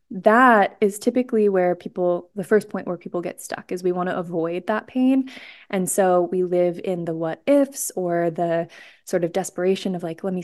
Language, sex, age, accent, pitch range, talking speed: English, female, 20-39, American, 185-210 Hz, 205 wpm